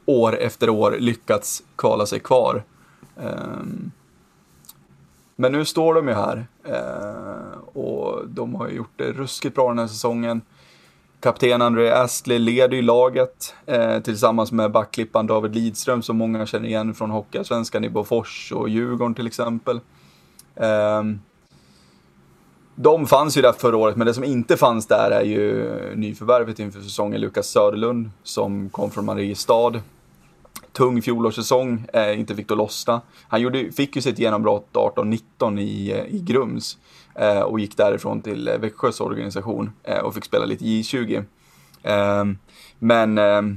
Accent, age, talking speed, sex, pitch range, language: native, 20-39, 135 wpm, male, 105-120 Hz, Swedish